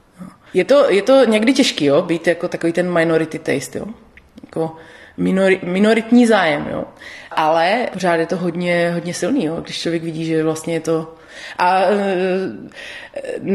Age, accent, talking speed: 30-49, native, 160 wpm